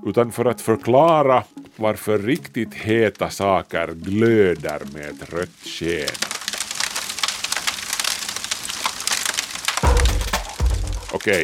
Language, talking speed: Swedish, 75 wpm